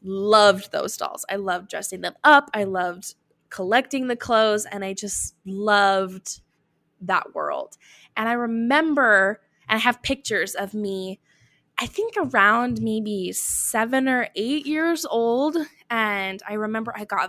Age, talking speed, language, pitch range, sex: 10-29, 145 wpm, English, 190-235 Hz, female